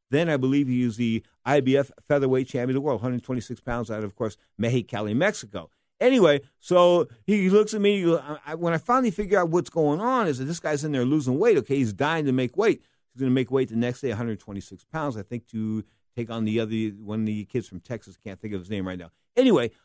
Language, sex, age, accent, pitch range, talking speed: English, male, 50-69, American, 120-165 Hz, 250 wpm